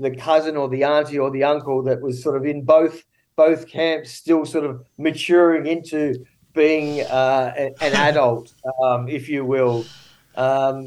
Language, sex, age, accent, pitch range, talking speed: Dutch, male, 40-59, Australian, 135-160 Hz, 165 wpm